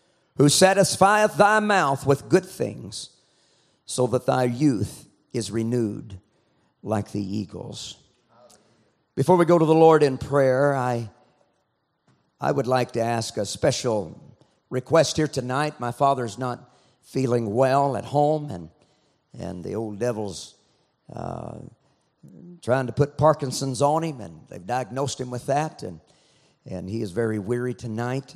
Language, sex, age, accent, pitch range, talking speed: English, male, 50-69, American, 110-150 Hz, 140 wpm